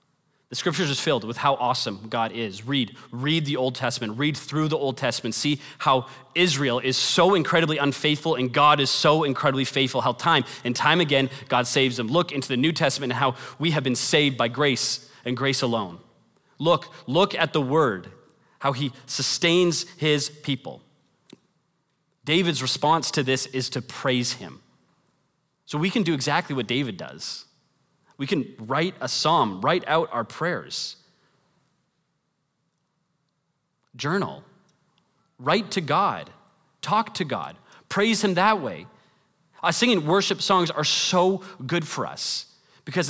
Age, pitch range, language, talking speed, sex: 30-49, 135-170 Hz, English, 155 wpm, male